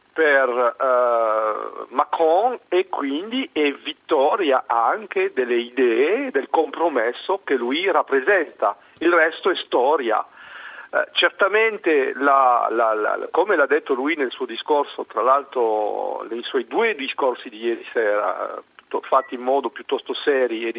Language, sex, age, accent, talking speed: Italian, male, 50-69, native, 140 wpm